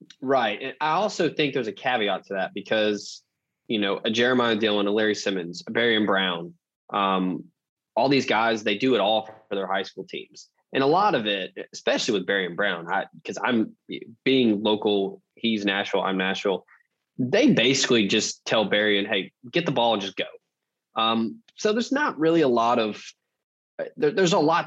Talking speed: 190 wpm